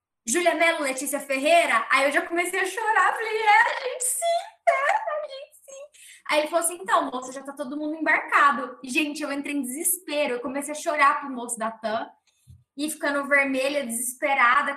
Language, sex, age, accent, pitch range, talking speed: Portuguese, female, 10-29, Brazilian, 270-340 Hz, 190 wpm